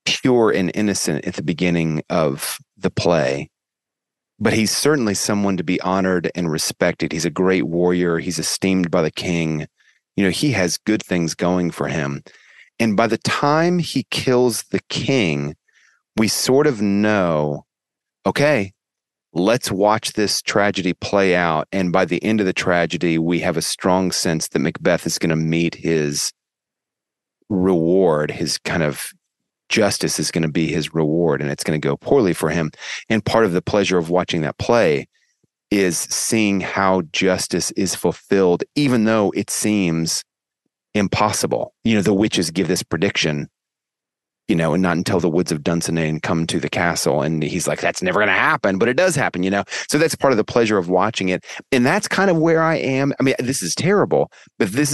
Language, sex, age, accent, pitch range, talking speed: English, male, 30-49, American, 85-110 Hz, 185 wpm